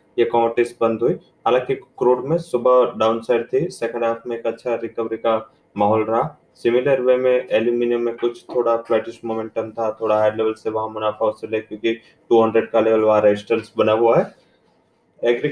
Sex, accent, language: male, Indian, English